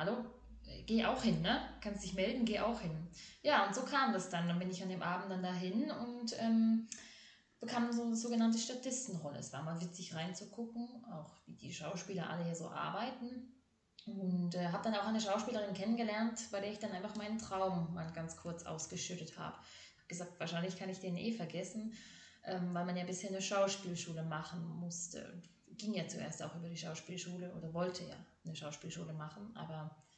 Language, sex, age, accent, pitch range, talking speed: German, female, 20-39, German, 175-230 Hz, 195 wpm